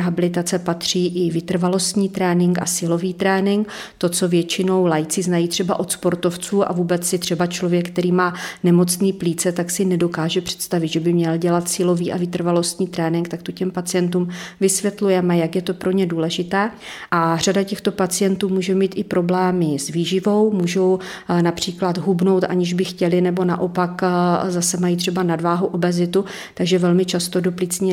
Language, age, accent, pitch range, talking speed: Czech, 40-59, native, 175-190 Hz, 160 wpm